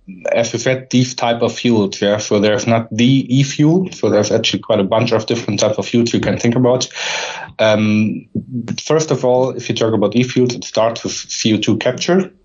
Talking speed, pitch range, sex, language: 200 wpm, 105-120 Hz, male, English